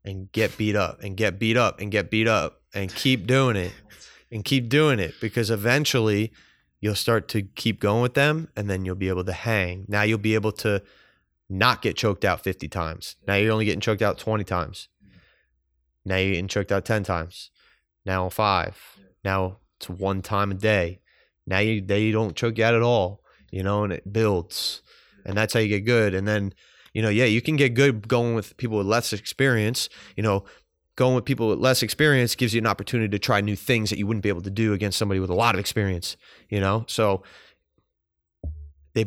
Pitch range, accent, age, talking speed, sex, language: 95-115 Hz, American, 20-39, 215 wpm, male, English